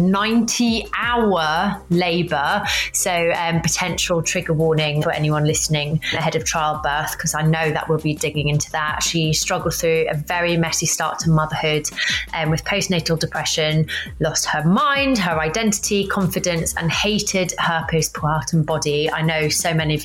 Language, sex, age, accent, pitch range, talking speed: English, female, 30-49, British, 155-175 Hz, 155 wpm